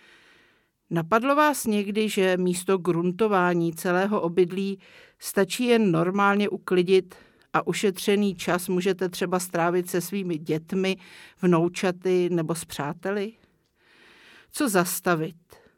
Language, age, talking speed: Czech, 50-69, 105 wpm